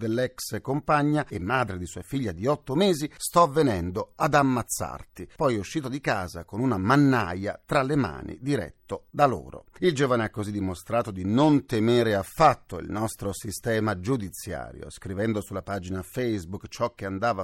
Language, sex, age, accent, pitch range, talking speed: Italian, male, 40-59, native, 100-140 Hz, 165 wpm